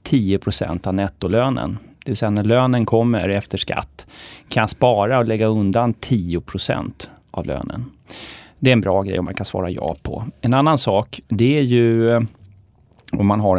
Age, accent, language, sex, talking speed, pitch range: 30-49, native, Swedish, male, 170 wpm, 95-125 Hz